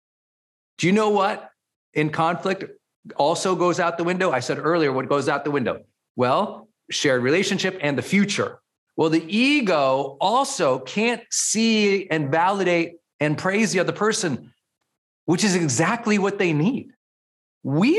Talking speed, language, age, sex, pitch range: 150 wpm, English, 40-59, male, 145-195 Hz